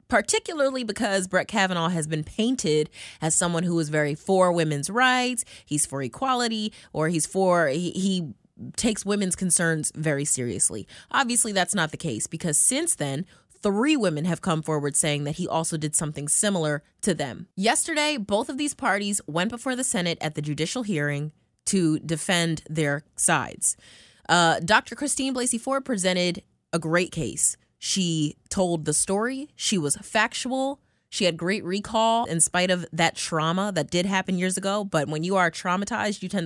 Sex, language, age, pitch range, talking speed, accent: female, English, 20-39, 155-225 Hz, 170 wpm, American